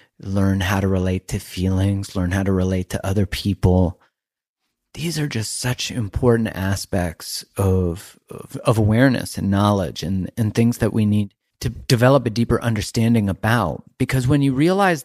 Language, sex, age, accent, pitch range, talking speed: English, male, 30-49, American, 95-130 Hz, 165 wpm